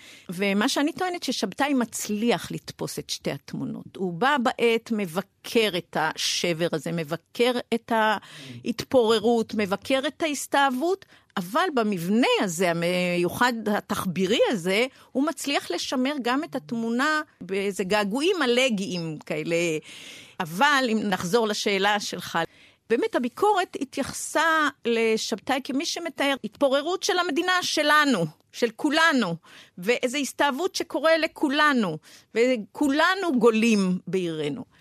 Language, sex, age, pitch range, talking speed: Hebrew, female, 50-69, 210-300 Hz, 105 wpm